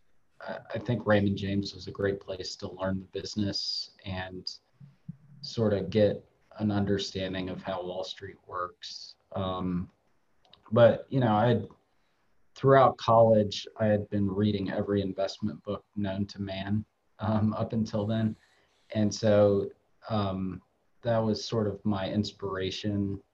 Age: 20-39